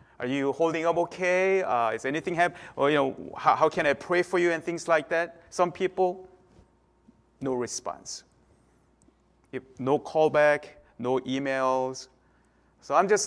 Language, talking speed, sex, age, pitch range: English, 160 wpm, male, 30-49, 130-180 Hz